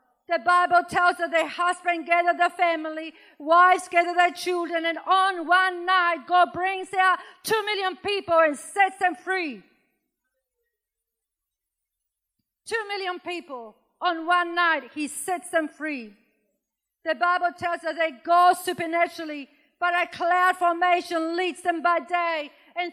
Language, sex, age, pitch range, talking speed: English, female, 40-59, 325-360 Hz, 140 wpm